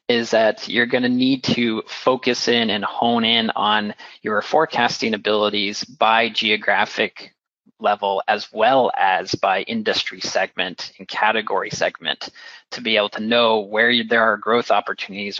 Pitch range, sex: 110-140 Hz, male